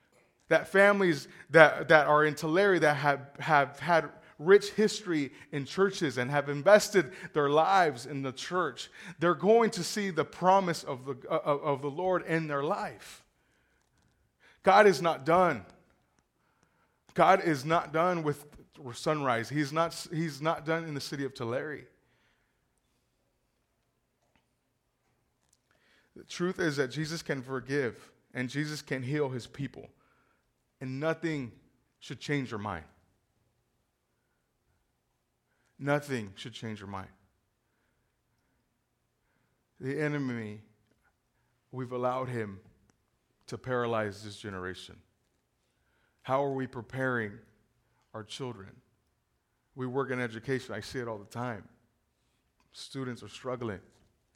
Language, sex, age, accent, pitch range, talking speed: English, male, 30-49, American, 110-160 Hz, 120 wpm